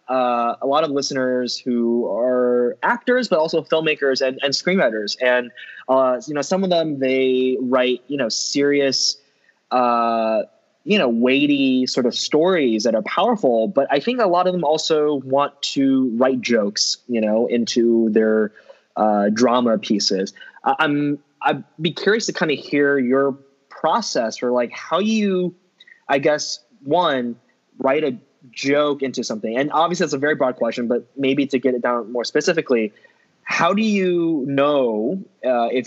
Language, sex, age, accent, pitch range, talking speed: English, male, 20-39, American, 115-145 Hz, 160 wpm